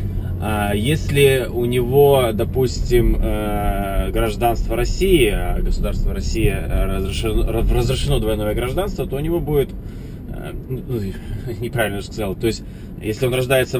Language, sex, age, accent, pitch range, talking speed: Russian, male, 20-39, native, 100-130 Hz, 110 wpm